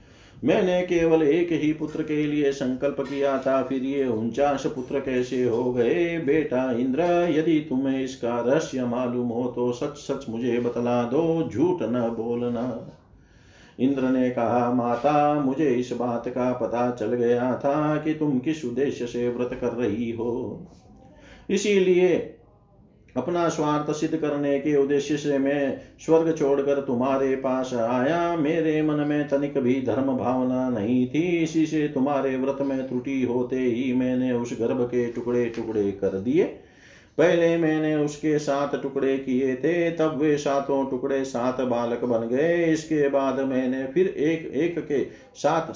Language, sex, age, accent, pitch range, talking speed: Hindi, male, 50-69, native, 120-150 Hz, 155 wpm